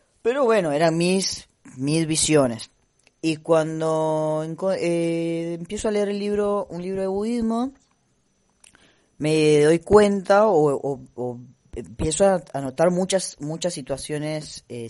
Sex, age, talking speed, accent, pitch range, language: female, 10-29, 125 wpm, Argentinian, 130-170 Hz, Spanish